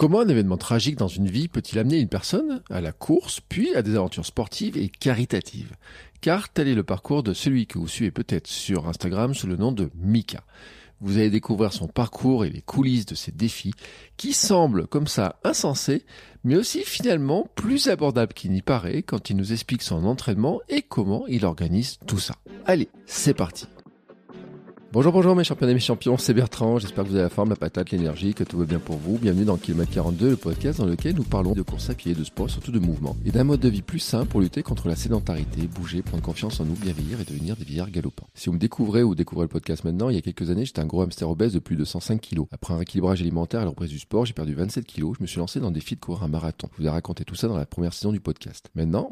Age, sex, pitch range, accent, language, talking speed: 40-59, male, 85-120 Hz, French, French, 245 wpm